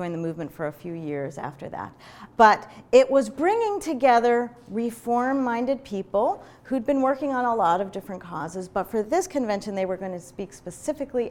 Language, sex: English, female